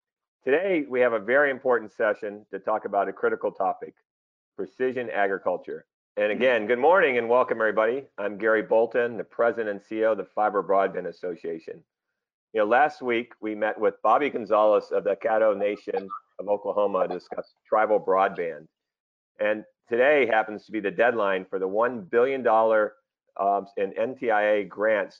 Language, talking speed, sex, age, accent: English, 160 wpm, male, 40-59, American